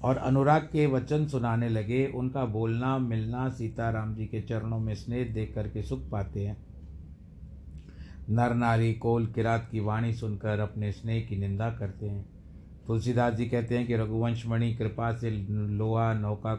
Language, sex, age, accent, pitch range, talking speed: Hindi, male, 50-69, native, 105-130 Hz, 155 wpm